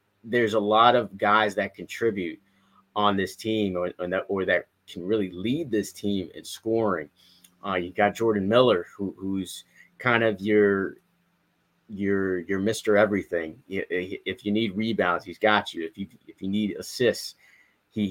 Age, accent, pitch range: 30-49, American, 95-110 Hz